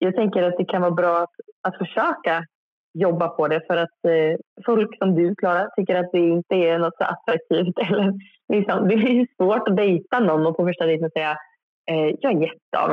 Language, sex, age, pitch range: Swedish, female, 20-39, 160-195 Hz